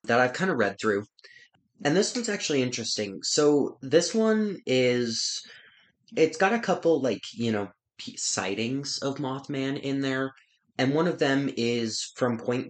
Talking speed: 160 wpm